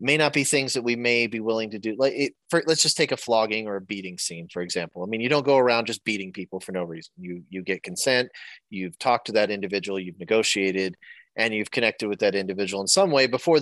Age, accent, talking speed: 30-49, American, 255 wpm